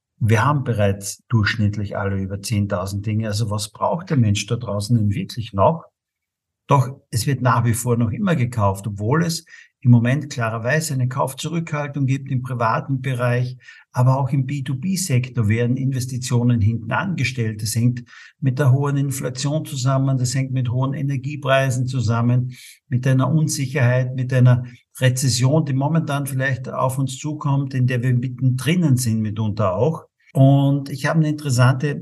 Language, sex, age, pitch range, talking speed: German, male, 50-69, 120-140 Hz, 155 wpm